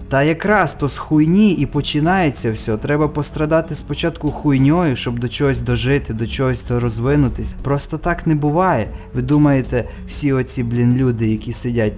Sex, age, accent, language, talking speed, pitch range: male, 20-39, native, Ukrainian, 160 wpm, 125-160 Hz